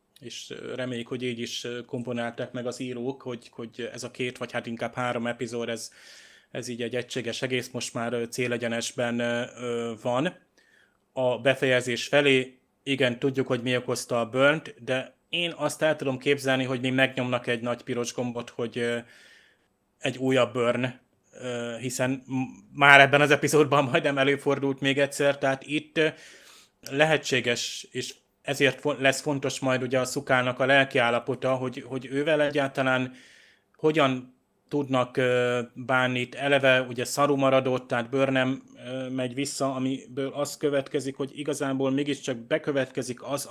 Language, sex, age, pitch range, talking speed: Hungarian, male, 30-49, 125-140 Hz, 140 wpm